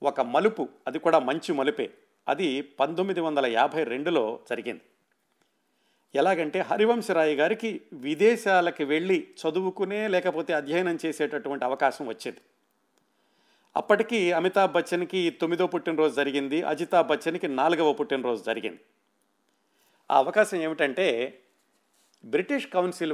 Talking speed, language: 100 wpm, Telugu